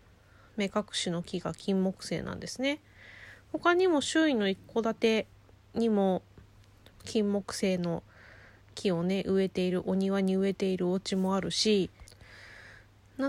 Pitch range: 170-240 Hz